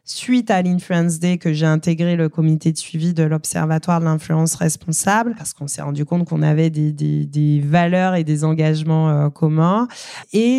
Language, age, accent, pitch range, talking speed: French, 20-39, French, 165-195 Hz, 185 wpm